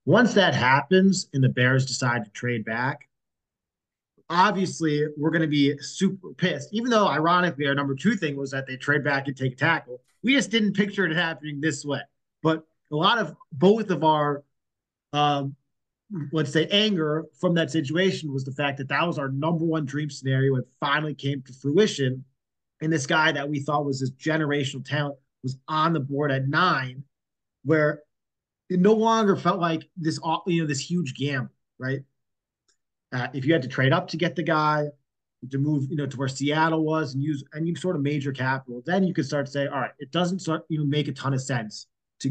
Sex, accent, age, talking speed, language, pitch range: male, American, 30-49, 205 wpm, English, 135-180 Hz